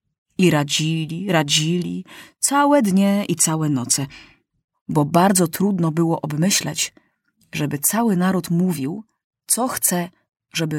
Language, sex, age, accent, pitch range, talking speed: Polish, female, 30-49, native, 155-225 Hz, 110 wpm